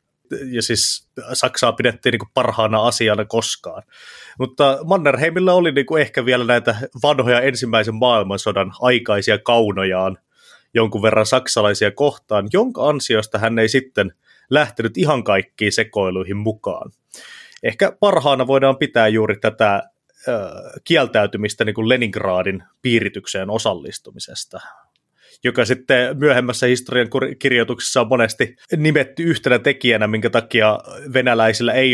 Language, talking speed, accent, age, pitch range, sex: Finnish, 105 wpm, native, 30-49, 105-130 Hz, male